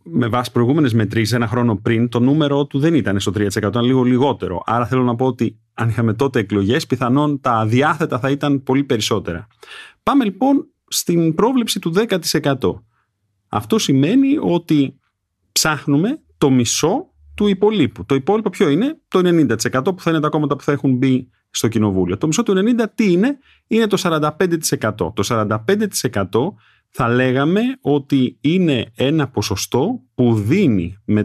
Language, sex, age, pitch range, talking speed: Greek, male, 30-49, 105-155 Hz, 160 wpm